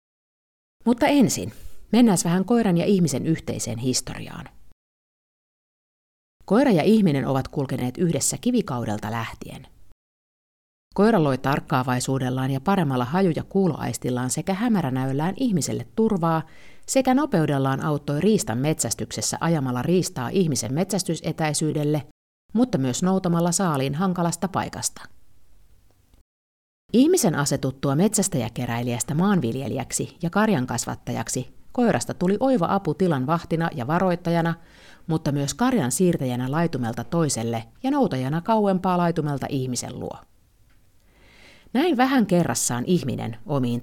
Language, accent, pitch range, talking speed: Finnish, native, 125-185 Hz, 105 wpm